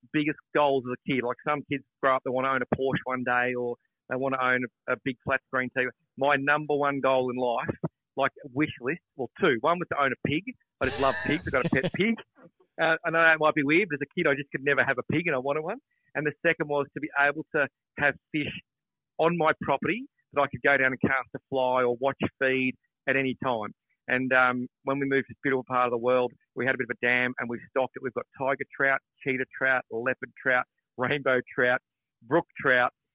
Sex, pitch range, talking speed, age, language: male, 125-150 Hz, 255 wpm, 40-59, English